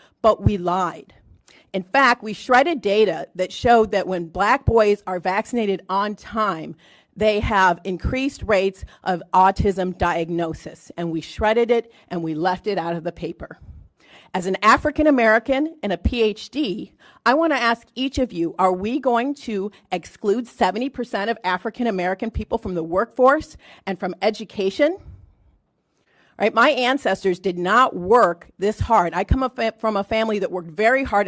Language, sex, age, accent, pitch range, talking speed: English, female, 40-59, American, 185-235 Hz, 160 wpm